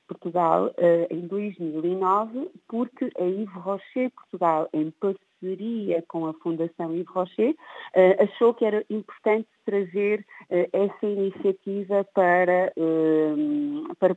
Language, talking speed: Portuguese, 100 wpm